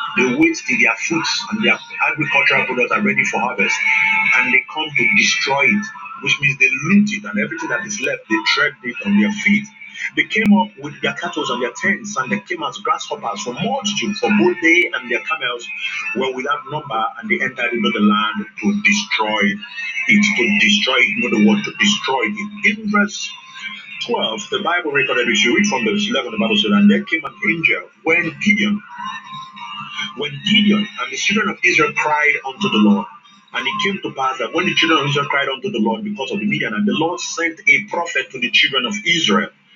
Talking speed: 215 wpm